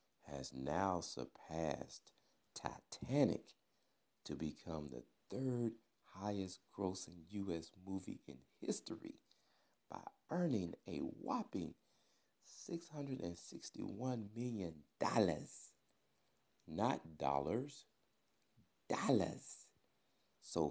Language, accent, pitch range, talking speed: English, American, 70-90 Hz, 70 wpm